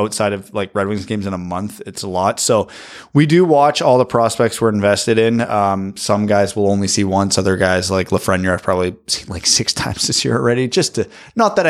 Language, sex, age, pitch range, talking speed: English, male, 20-39, 100-120 Hz, 235 wpm